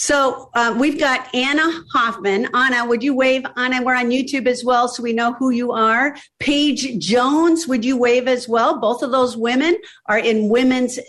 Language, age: English, 50-69